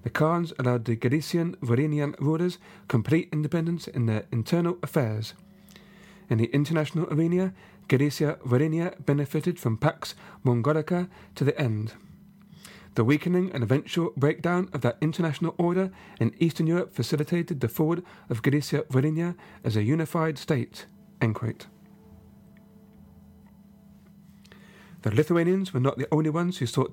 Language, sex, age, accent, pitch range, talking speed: English, male, 40-59, British, 135-175 Hz, 125 wpm